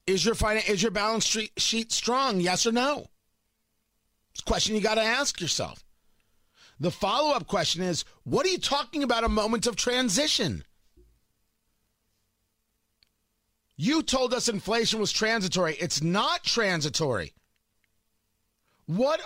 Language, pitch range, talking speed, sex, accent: English, 175-240 Hz, 130 wpm, male, American